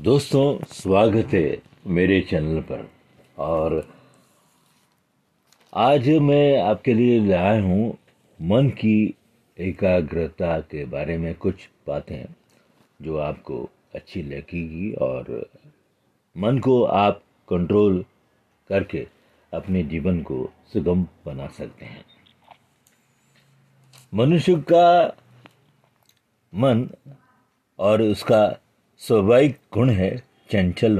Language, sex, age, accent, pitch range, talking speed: Hindi, male, 50-69, native, 95-130 Hz, 90 wpm